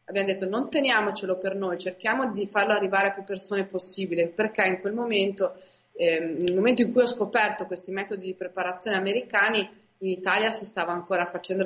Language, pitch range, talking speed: Italian, 180-215 Hz, 185 wpm